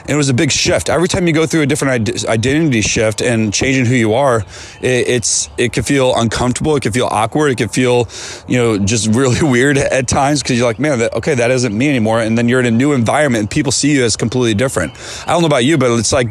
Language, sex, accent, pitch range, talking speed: English, male, American, 110-135 Hz, 255 wpm